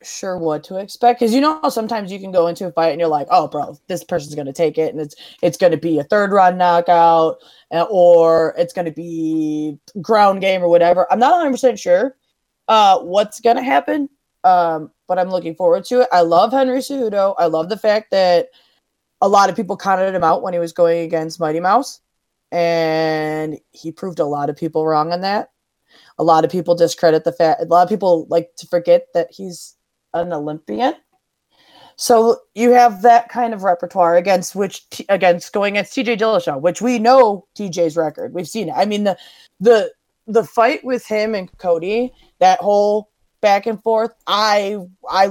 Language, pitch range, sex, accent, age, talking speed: English, 165-220 Hz, female, American, 20-39, 200 wpm